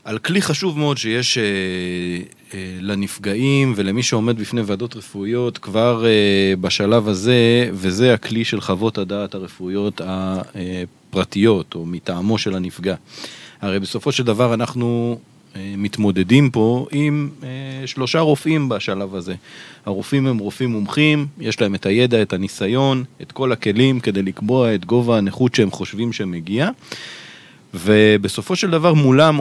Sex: male